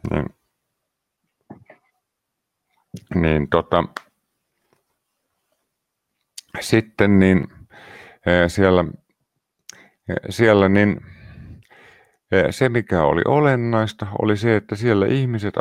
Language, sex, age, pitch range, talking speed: Finnish, male, 50-69, 85-105 Hz, 65 wpm